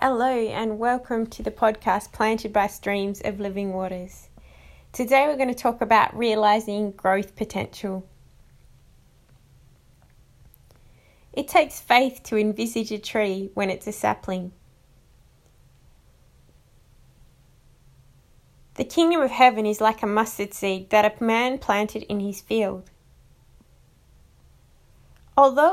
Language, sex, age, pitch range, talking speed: English, female, 20-39, 195-225 Hz, 115 wpm